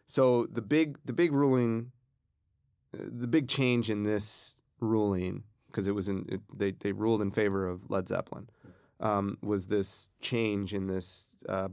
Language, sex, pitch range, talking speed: English, male, 95-115 Hz, 165 wpm